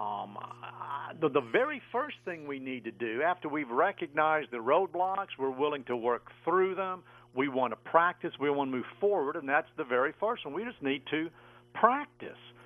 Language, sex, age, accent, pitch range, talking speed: English, male, 50-69, American, 145-205 Hz, 195 wpm